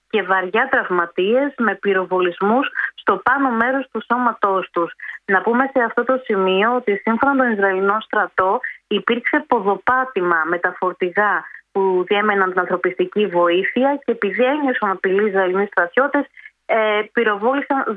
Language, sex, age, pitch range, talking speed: Greek, female, 20-39, 195-240 Hz, 130 wpm